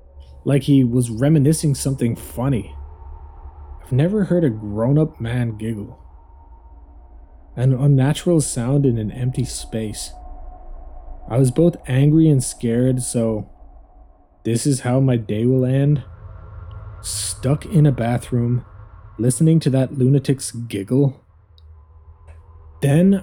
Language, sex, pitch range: English, male, 100-145 Hz